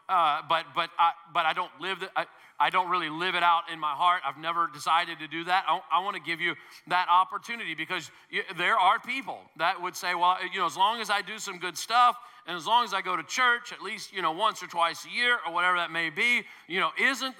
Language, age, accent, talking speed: English, 40-59, American, 250 wpm